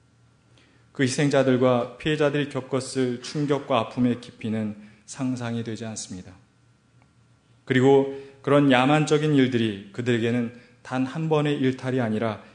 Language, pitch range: Korean, 115-135 Hz